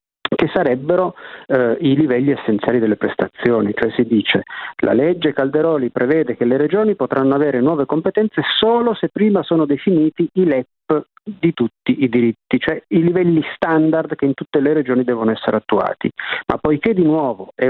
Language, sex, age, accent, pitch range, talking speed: Italian, male, 50-69, native, 125-175 Hz, 170 wpm